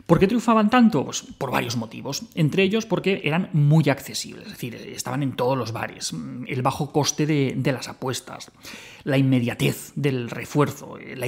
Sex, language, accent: male, Spanish, Spanish